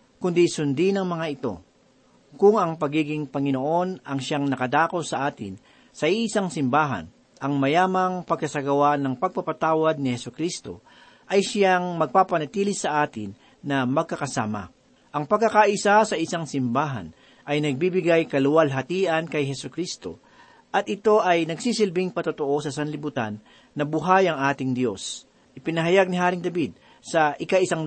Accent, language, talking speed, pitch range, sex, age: native, Filipino, 125 wpm, 140-180 Hz, male, 40-59